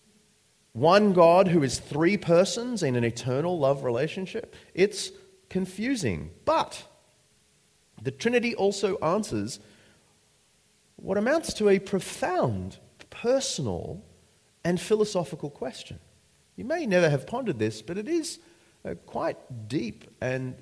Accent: Australian